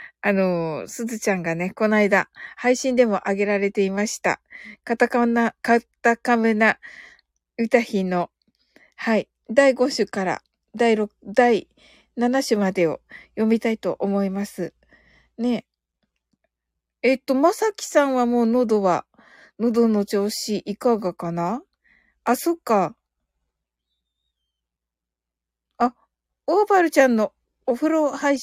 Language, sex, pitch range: Japanese, female, 175-245 Hz